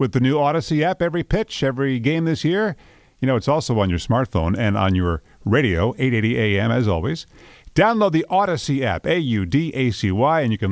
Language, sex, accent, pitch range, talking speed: English, male, American, 105-140 Hz, 190 wpm